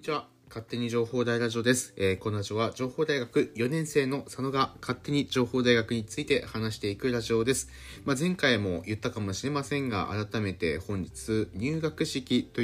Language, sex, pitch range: Japanese, male, 95-130 Hz